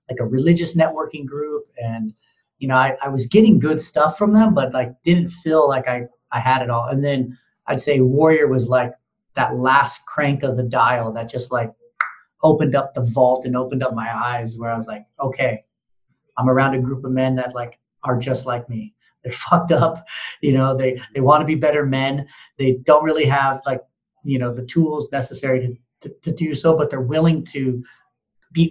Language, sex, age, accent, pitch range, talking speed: English, male, 30-49, American, 125-150 Hz, 210 wpm